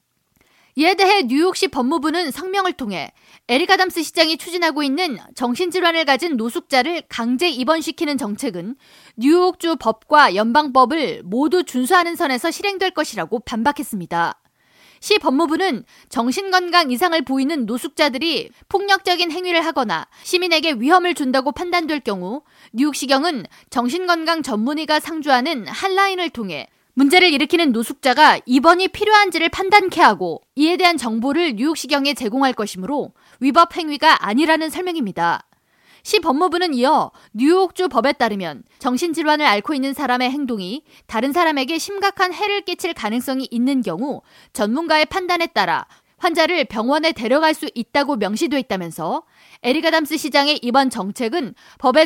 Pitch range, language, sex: 250-345 Hz, Korean, female